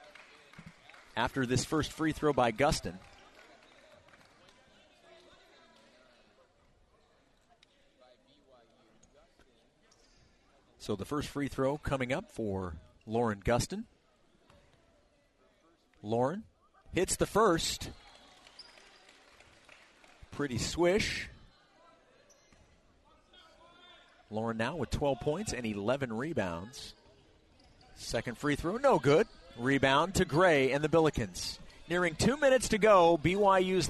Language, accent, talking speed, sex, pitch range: English, American, 85 wpm, male, 130-180 Hz